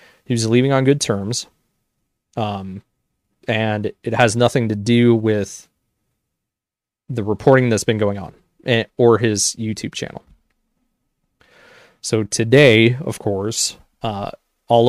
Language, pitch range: English, 110-130 Hz